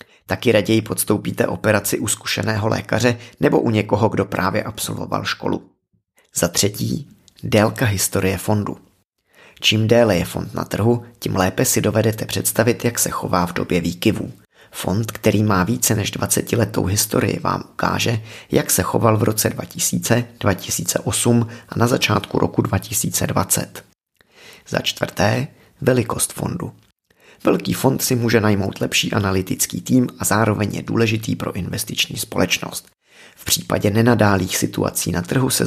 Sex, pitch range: male, 95-115 Hz